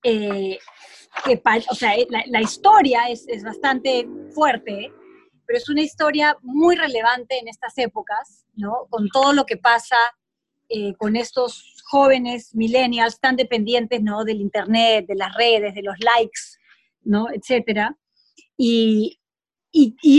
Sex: female